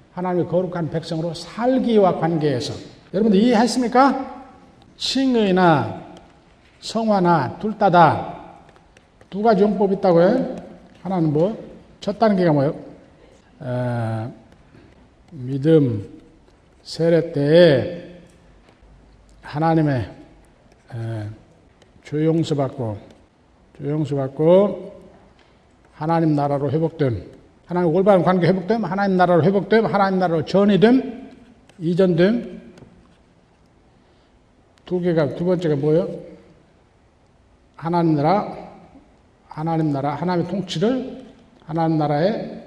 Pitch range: 145-190 Hz